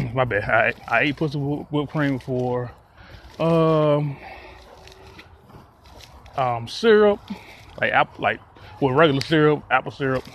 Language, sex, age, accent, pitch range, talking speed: English, male, 20-39, American, 115-145 Hz, 115 wpm